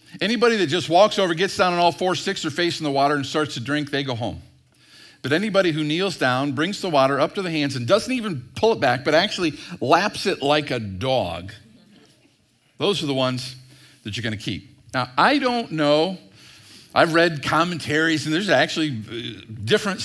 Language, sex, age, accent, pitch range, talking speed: English, male, 50-69, American, 130-175 Hz, 200 wpm